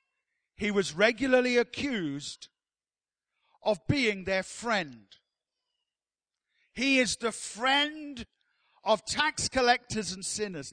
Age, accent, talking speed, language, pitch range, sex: 50-69, British, 95 wpm, English, 180-235 Hz, male